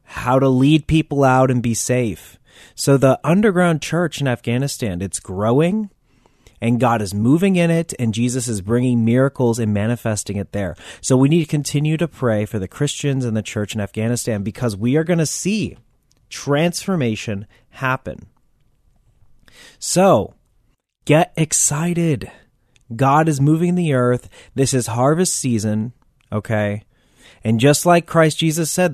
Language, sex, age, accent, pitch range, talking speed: English, male, 30-49, American, 115-155 Hz, 150 wpm